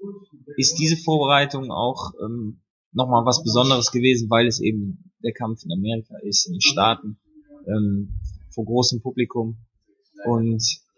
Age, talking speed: 20-39, 135 wpm